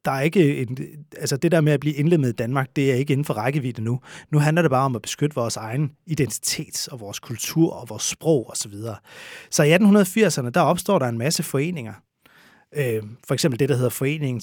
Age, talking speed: 30-49, 225 wpm